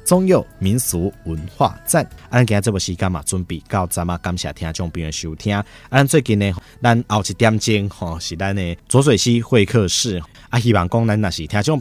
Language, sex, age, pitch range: Chinese, male, 20-39, 85-110 Hz